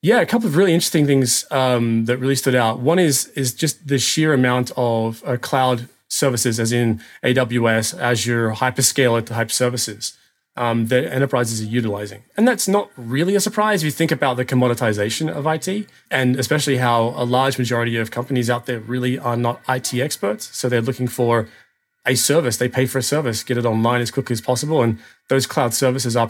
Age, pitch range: 20-39, 120-140 Hz